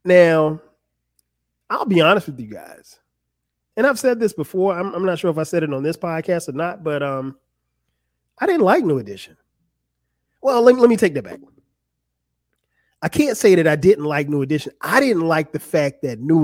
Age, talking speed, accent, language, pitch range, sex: 30-49, 200 wpm, American, English, 135-185 Hz, male